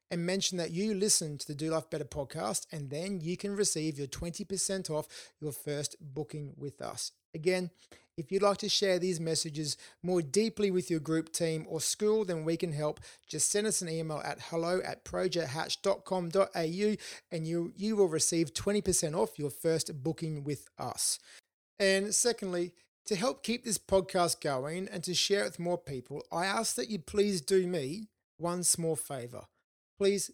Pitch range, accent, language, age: 150-190 Hz, Australian, English, 30-49